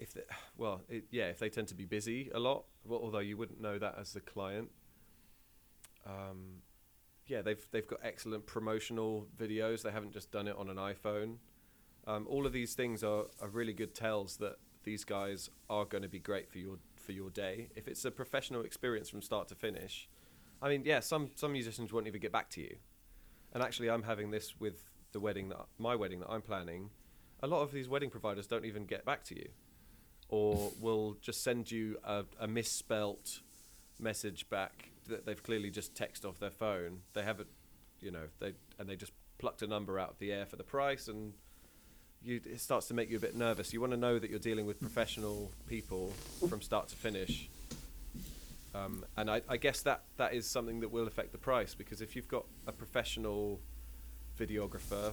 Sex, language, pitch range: male, English, 100-115 Hz